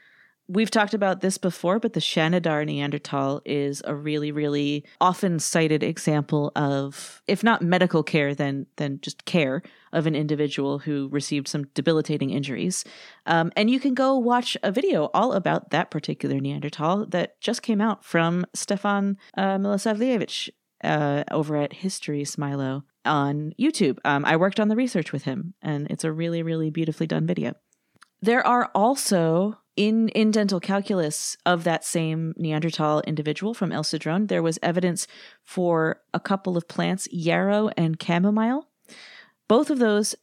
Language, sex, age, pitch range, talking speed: English, female, 30-49, 150-205 Hz, 155 wpm